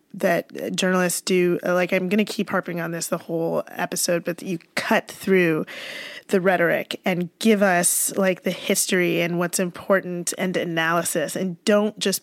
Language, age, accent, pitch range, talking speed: English, 20-39, American, 185-205 Hz, 165 wpm